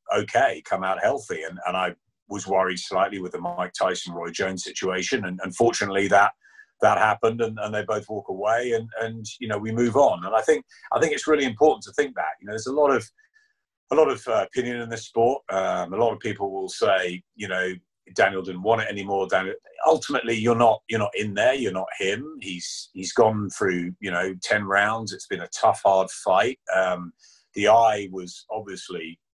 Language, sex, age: English, male, 40-59